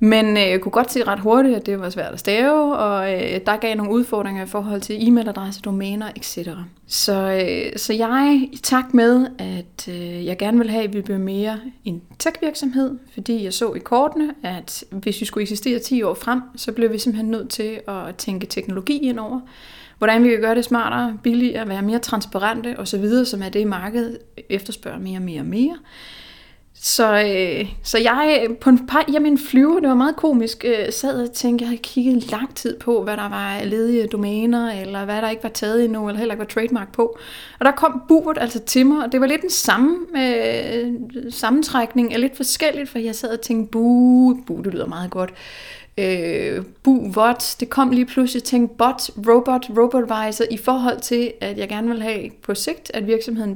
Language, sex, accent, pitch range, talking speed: Danish, female, native, 210-255 Hz, 200 wpm